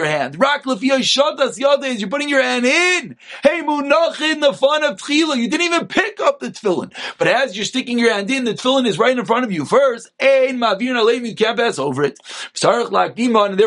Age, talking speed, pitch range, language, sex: 30-49, 195 wpm, 190-260 Hz, English, male